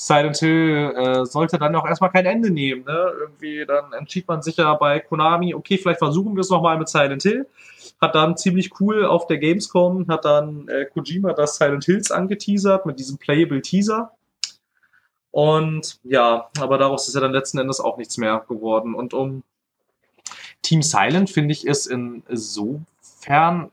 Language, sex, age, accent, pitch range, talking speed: German, male, 20-39, German, 130-165 Hz, 175 wpm